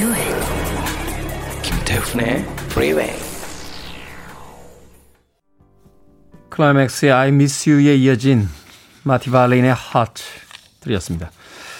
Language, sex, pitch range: Korean, male, 105-165 Hz